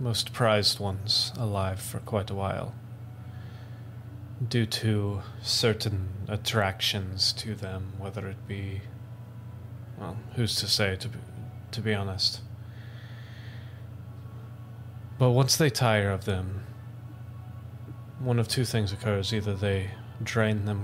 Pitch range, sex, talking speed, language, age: 105-120 Hz, male, 115 wpm, English, 30-49